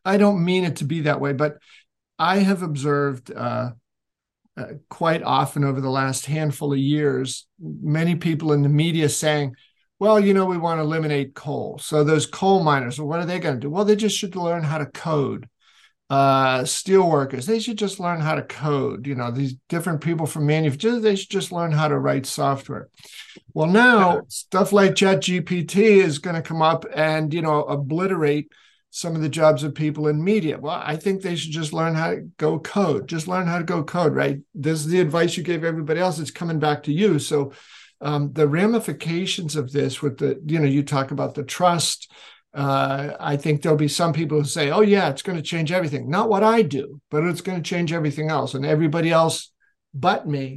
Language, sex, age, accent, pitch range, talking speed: English, male, 50-69, American, 145-180 Hz, 215 wpm